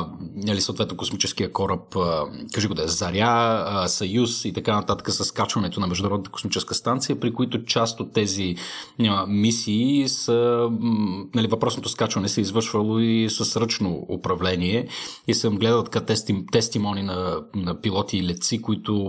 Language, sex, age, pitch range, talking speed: Bulgarian, male, 30-49, 95-115 Hz, 150 wpm